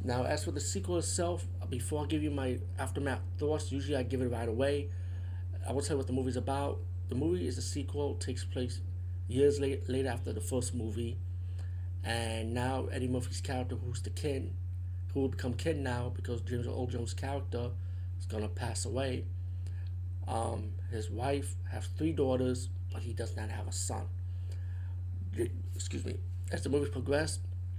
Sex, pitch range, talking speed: male, 90-95 Hz, 180 wpm